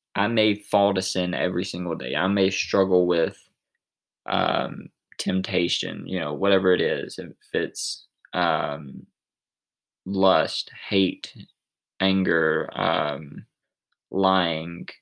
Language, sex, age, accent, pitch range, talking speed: English, male, 20-39, American, 90-100 Hz, 110 wpm